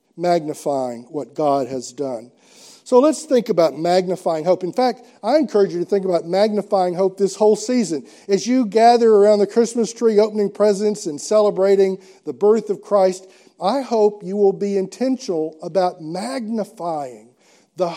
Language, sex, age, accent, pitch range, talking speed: English, male, 50-69, American, 160-215 Hz, 160 wpm